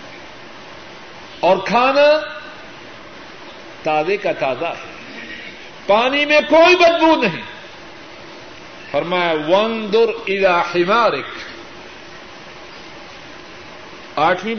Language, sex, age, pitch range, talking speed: Urdu, male, 60-79, 185-265 Hz, 65 wpm